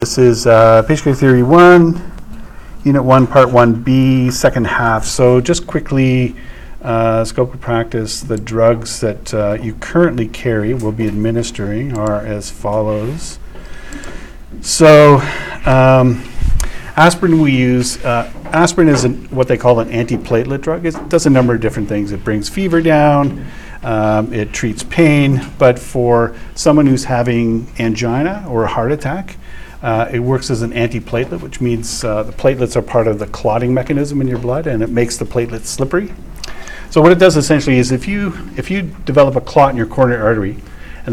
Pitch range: 110-140 Hz